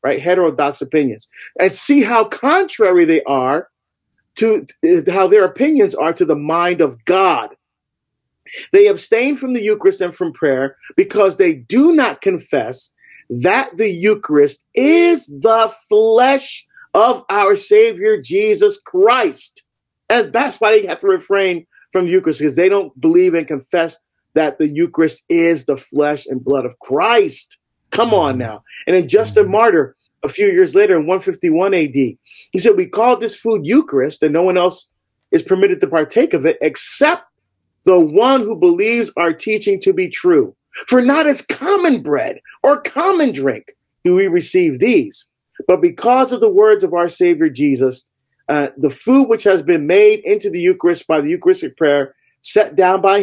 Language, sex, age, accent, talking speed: English, male, 40-59, American, 170 wpm